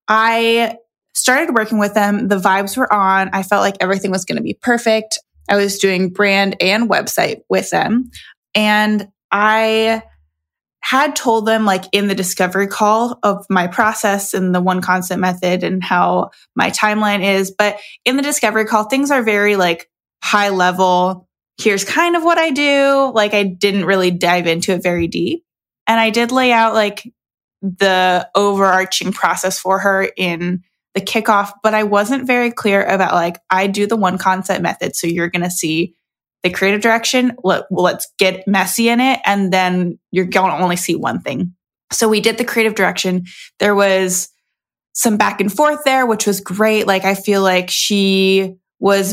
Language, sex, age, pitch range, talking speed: English, female, 20-39, 185-220 Hz, 180 wpm